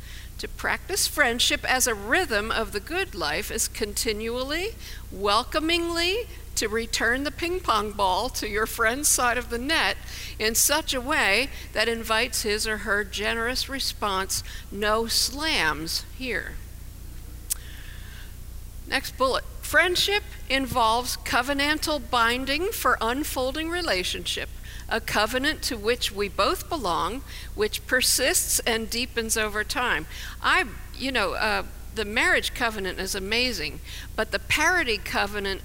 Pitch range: 205-275 Hz